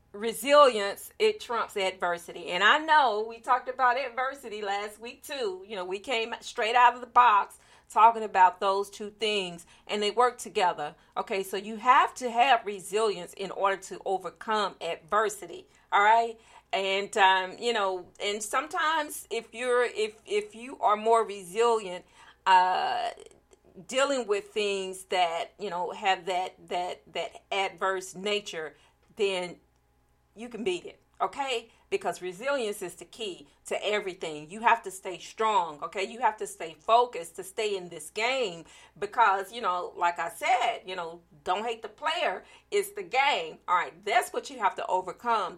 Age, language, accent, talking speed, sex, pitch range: 40-59, English, American, 165 wpm, female, 185-250 Hz